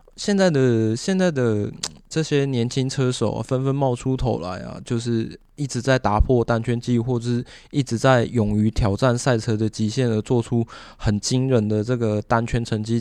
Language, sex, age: Chinese, male, 20-39